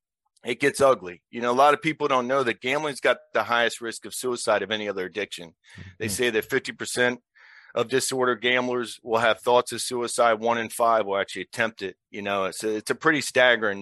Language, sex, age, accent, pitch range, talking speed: English, male, 40-59, American, 105-120 Hz, 215 wpm